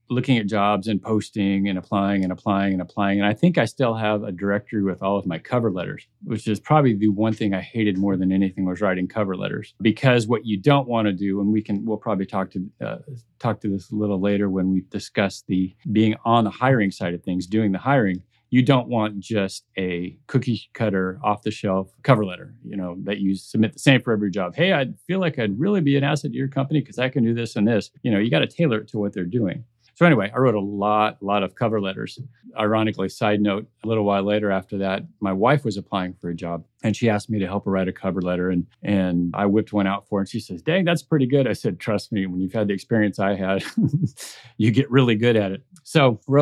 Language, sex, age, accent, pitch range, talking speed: English, male, 40-59, American, 95-120 Hz, 255 wpm